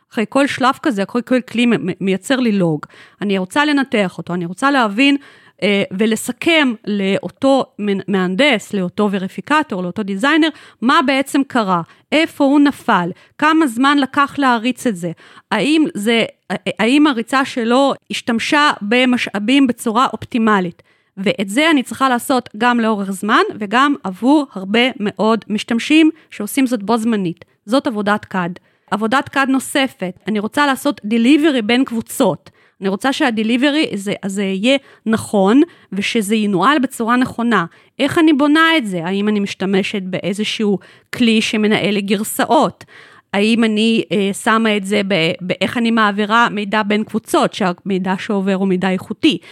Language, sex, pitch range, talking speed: Hebrew, female, 200-270 Hz, 140 wpm